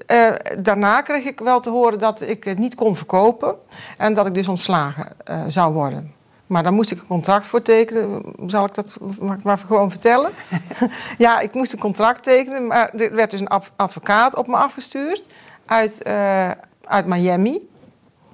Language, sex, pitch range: Dutch, female, 180-230 Hz